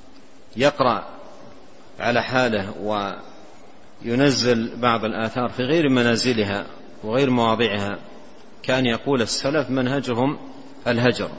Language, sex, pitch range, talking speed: Arabic, male, 115-140 Hz, 85 wpm